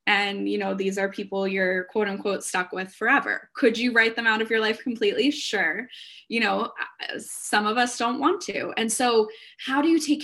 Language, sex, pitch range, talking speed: English, female, 210-260 Hz, 210 wpm